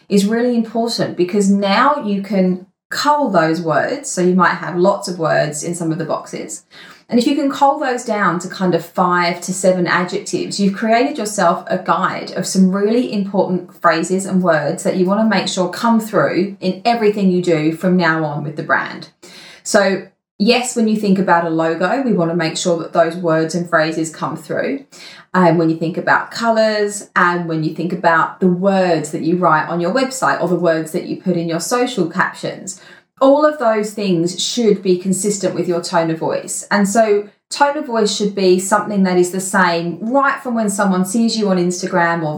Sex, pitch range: female, 170-205 Hz